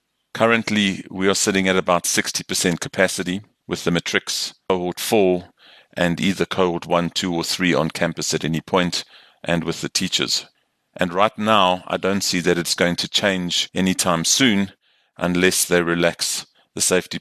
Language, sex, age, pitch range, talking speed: English, male, 40-59, 85-95 Hz, 165 wpm